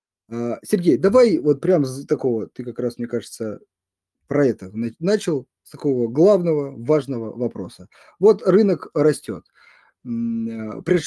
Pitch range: 125-180 Hz